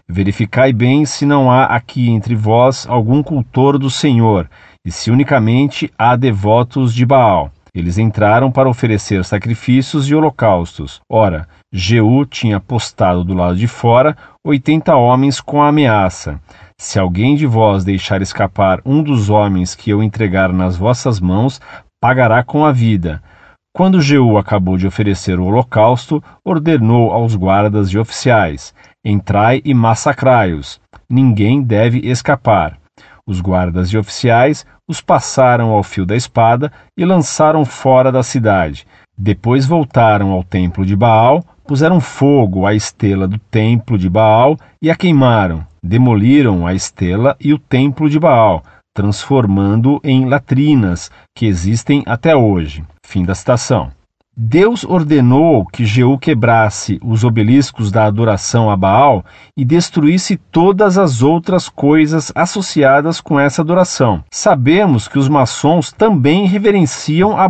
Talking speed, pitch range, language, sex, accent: 135 wpm, 100-140 Hz, Portuguese, male, Brazilian